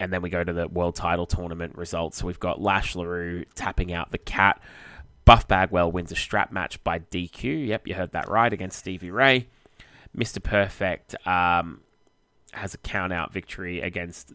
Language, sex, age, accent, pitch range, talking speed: English, male, 20-39, Australian, 90-105 Hz, 175 wpm